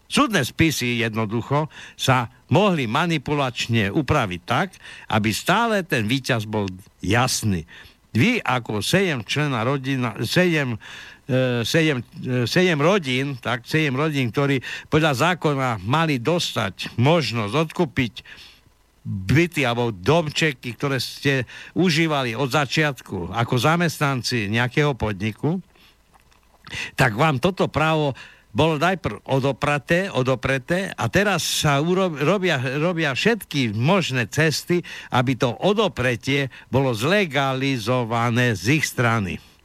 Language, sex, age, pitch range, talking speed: Slovak, male, 60-79, 120-155 Hz, 90 wpm